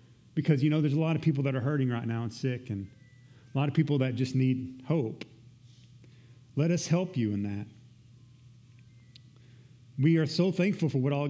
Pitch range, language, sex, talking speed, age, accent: 120-150 Hz, English, male, 195 wpm, 30-49, American